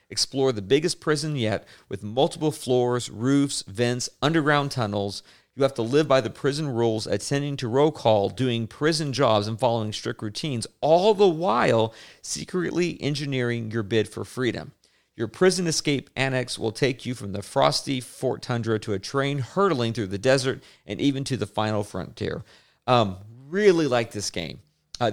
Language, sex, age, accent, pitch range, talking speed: English, male, 40-59, American, 105-135 Hz, 170 wpm